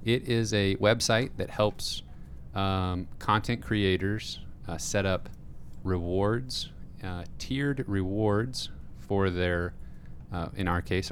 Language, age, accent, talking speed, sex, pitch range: English, 30-49, American, 120 wpm, male, 85-105 Hz